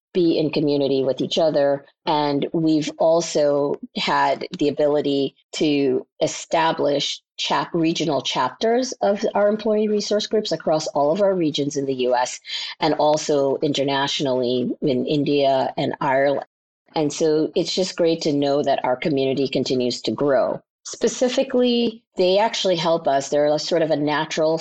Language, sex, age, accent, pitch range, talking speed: English, female, 40-59, American, 130-165 Hz, 145 wpm